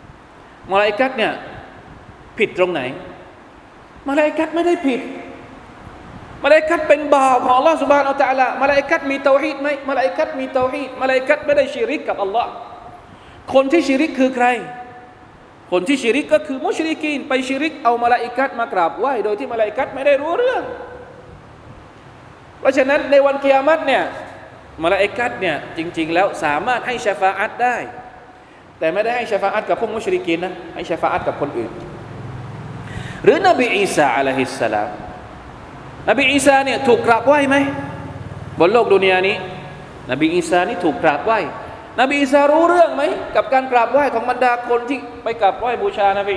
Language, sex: Thai, male